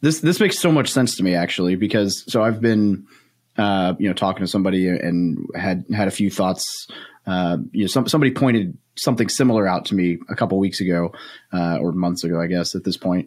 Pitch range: 90-110 Hz